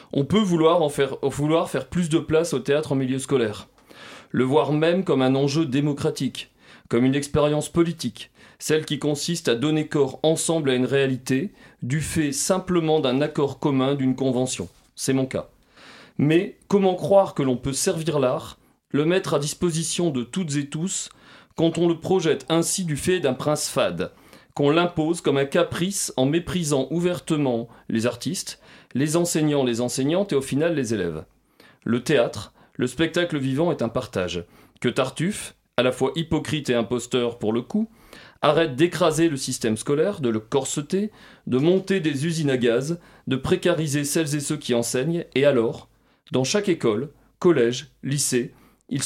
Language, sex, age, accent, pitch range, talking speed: French, male, 30-49, French, 130-170 Hz, 170 wpm